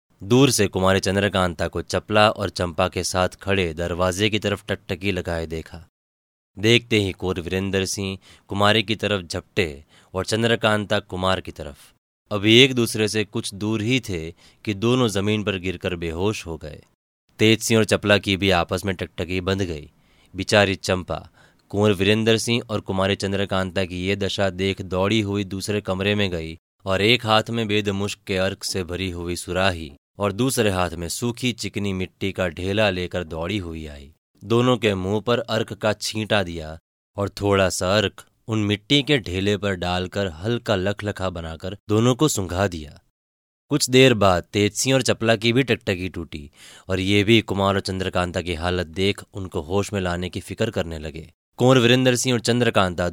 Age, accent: 20-39, native